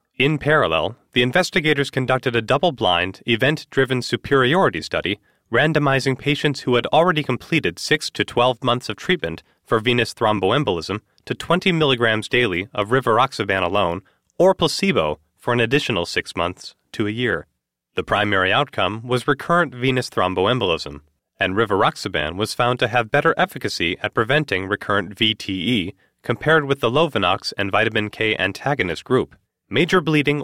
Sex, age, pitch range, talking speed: male, 30-49, 105-150 Hz, 140 wpm